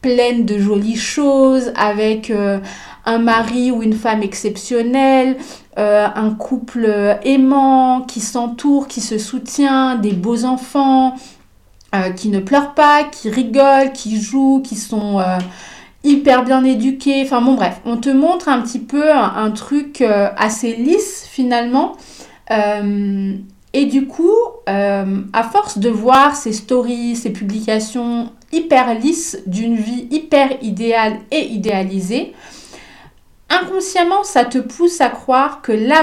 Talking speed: 140 wpm